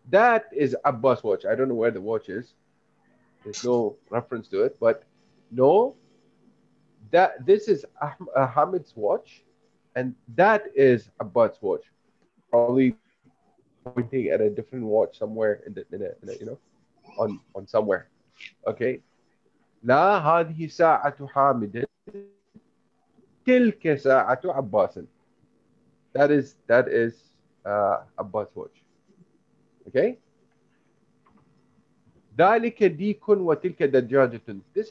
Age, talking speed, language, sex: 30-49, 115 wpm, Malay, male